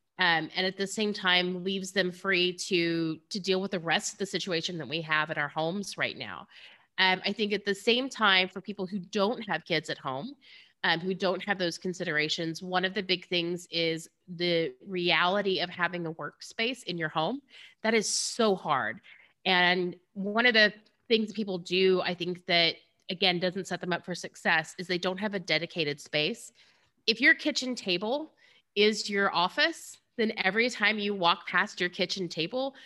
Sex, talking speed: female, 195 wpm